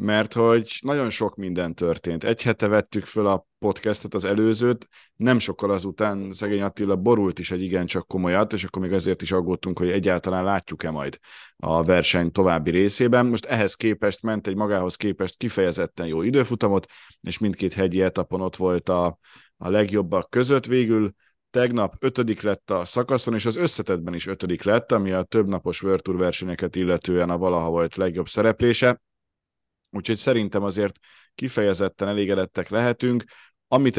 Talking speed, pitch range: 155 wpm, 90-110 Hz